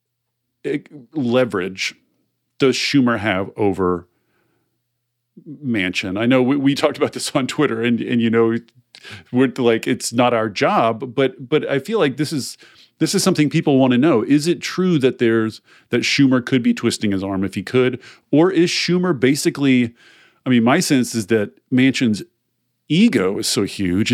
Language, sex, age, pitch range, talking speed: English, male, 40-59, 100-130 Hz, 170 wpm